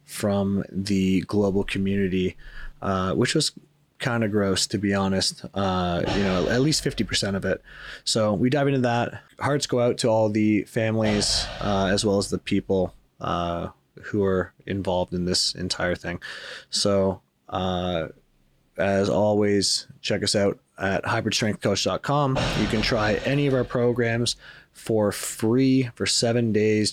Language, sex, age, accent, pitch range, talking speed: English, male, 30-49, American, 95-120 Hz, 155 wpm